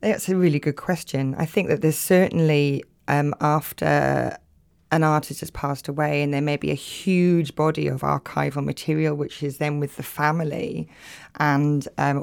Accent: British